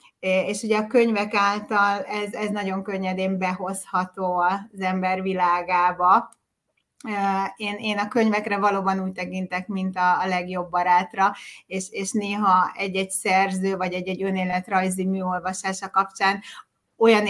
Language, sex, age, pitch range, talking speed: Hungarian, female, 30-49, 185-210 Hz, 125 wpm